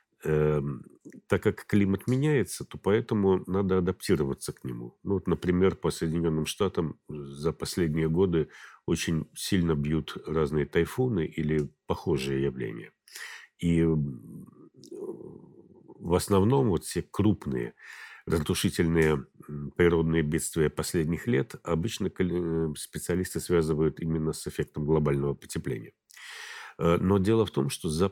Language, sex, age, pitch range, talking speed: Russian, male, 50-69, 75-90 Hz, 105 wpm